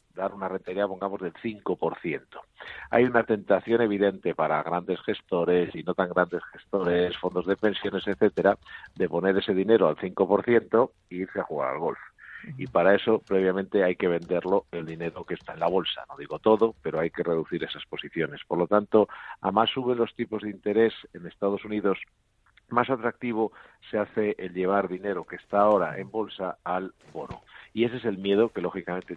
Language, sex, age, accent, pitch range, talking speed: Spanish, male, 50-69, Spanish, 95-110 Hz, 185 wpm